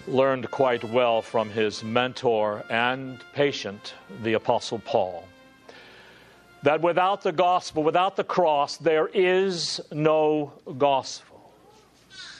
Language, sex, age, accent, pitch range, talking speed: English, male, 50-69, American, 130-175 Hz, 105 wpm